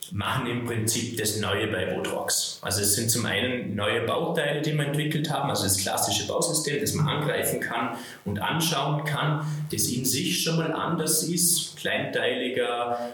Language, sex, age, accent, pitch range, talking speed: German, male, 20-39, German, 105-135 Hz, 170 wpm